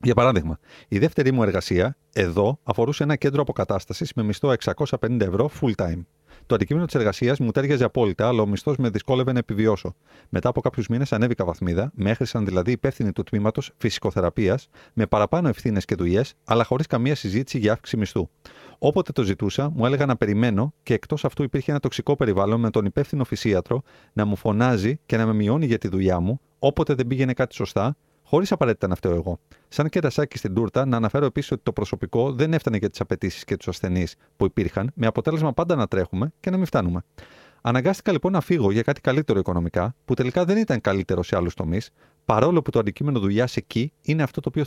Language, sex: Greek, male